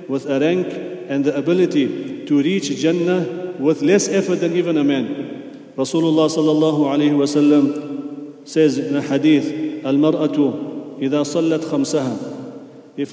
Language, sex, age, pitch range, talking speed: English, male, 40-59, 150-175 Hz, 140 wpm